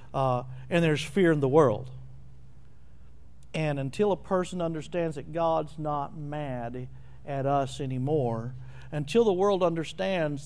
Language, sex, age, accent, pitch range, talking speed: English, male, 50-69, American, 140-180 Hz, 130 wpm